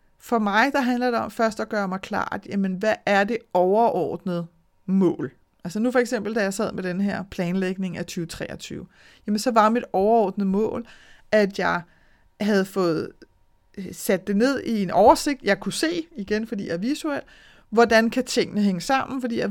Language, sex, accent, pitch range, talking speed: Danish, female, native, 185-225 Hz, 190 wpm